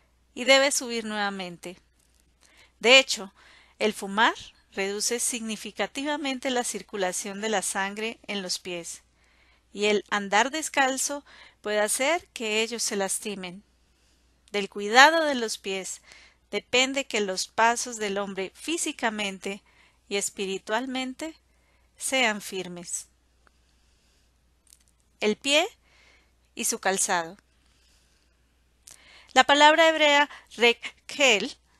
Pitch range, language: 180-250 Hz, Spanish